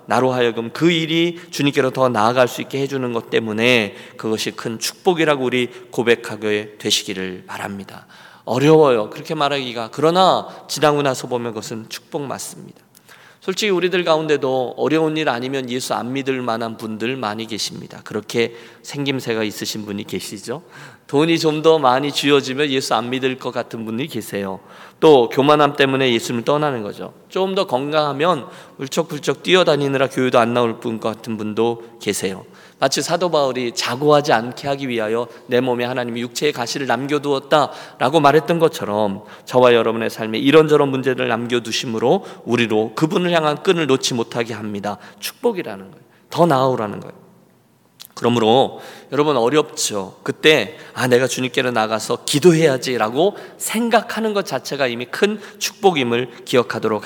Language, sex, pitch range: Korean, male, 115-155 Hz